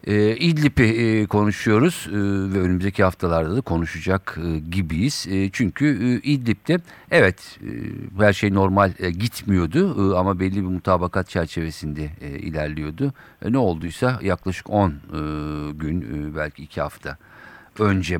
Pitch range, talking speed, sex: 90-125 Hz, 140 wpm, male